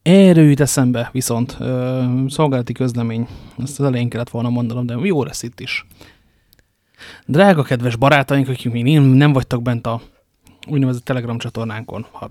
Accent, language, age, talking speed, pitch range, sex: Finnish, English, 30-49, 145 wpm, 120-140 Hz, male